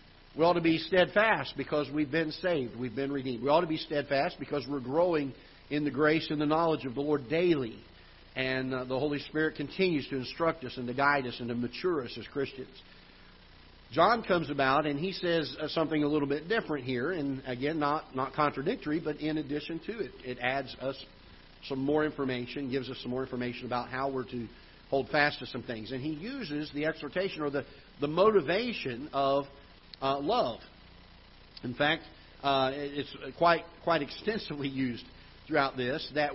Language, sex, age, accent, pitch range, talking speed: English, male, 50-69, American, 130-160 Hz, 185 wpm